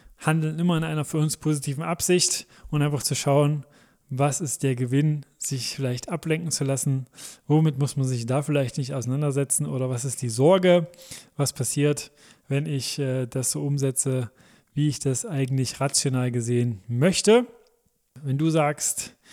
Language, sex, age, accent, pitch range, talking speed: German, male, 20-39, German, 135-155 Hz, 160 wpm